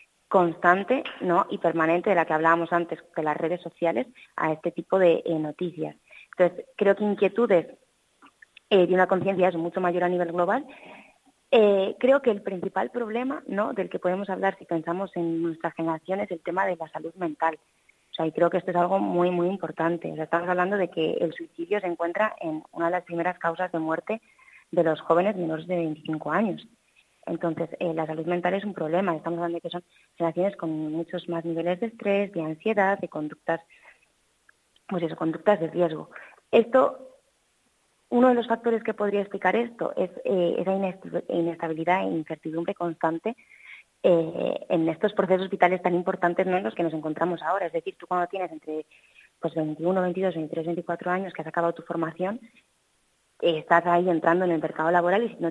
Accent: Spanish